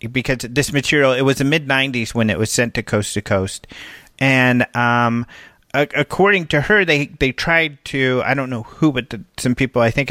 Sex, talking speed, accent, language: male, 215 wpm, American, English